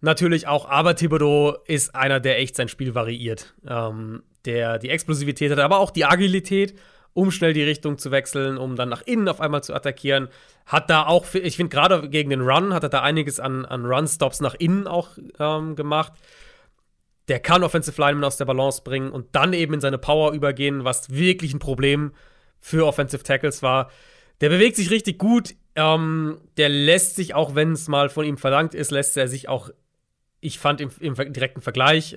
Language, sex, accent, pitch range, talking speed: German, male, German, 130-160 Hz, 195 wpm